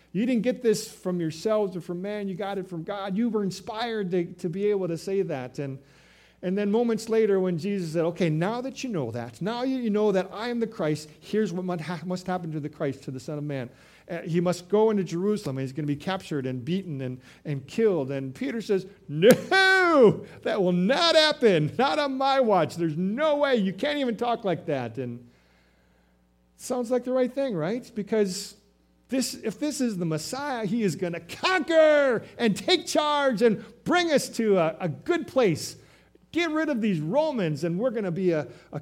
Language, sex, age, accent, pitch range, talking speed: English, male, 50-69, American, 145-225 Hz, 210 wpm